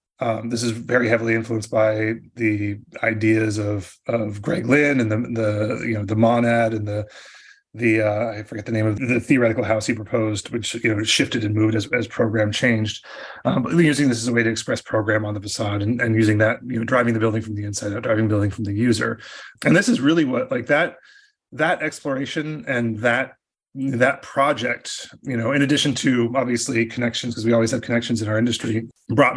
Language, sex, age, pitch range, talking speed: English, male, 30-49, 110-125 Hz, 215 wpm